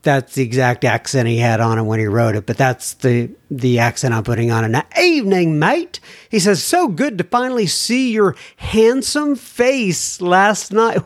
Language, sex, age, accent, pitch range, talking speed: English, male, 50-69, American, 160-225 Hz, 195 wpm